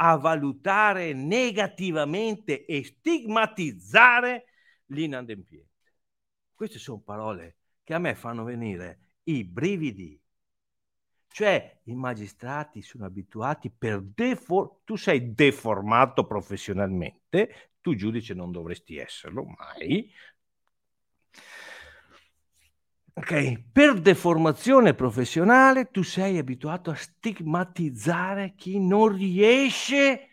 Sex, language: male, Italian